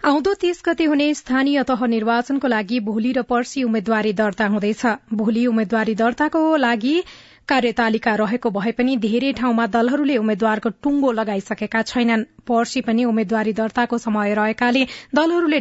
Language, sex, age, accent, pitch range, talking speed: English, female, 30-49, Indian, 220-265 Hz, 110 wpm